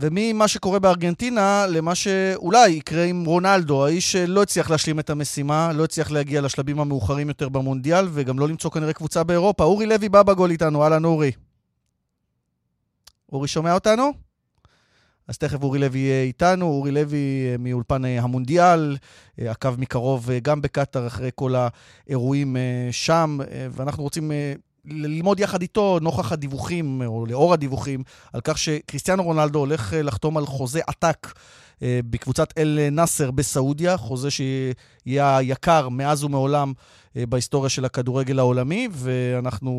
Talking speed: 130 wpm